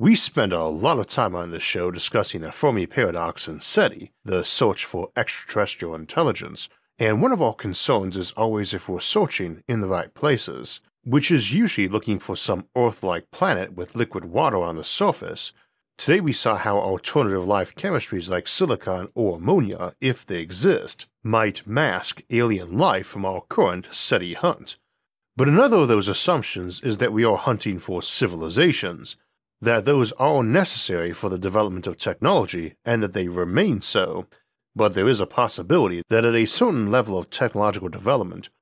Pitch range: 95-120 Hz